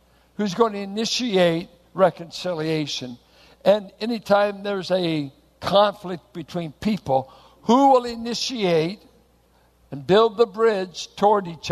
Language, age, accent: English, 60-79, American